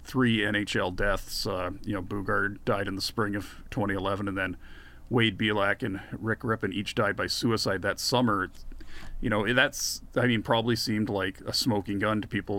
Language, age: English, 40-59